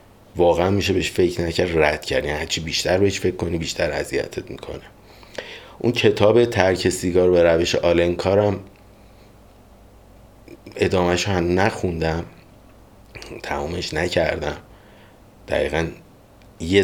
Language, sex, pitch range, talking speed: Persian, male, 90-110 Hz, 110 wpm